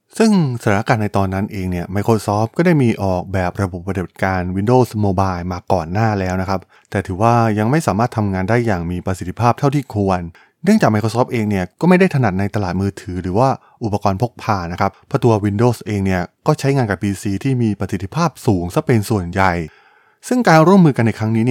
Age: 20-39